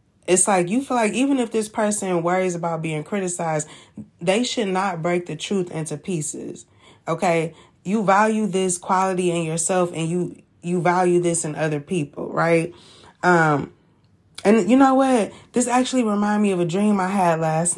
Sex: female